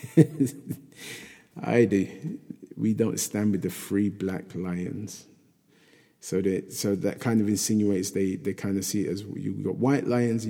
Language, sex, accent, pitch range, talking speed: English, male, British, 95-110 Hz, 165 wpm